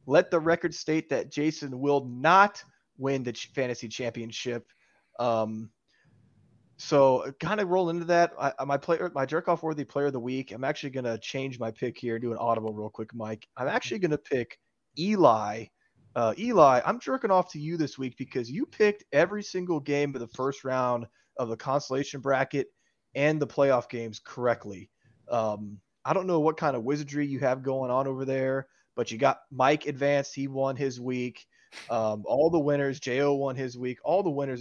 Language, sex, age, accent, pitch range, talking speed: English, male, 20-39, American, 115-145 Hz, 195 wpm